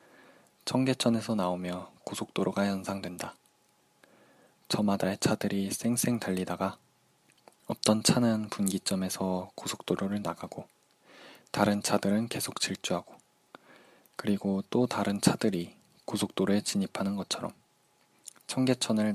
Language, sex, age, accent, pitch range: Korean, male, 20-39, native, 95-110 Hz